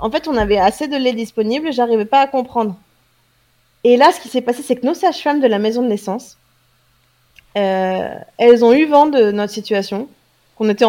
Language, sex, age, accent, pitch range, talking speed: French, female, 20-39, French, 200-250 Hz, 205 wpm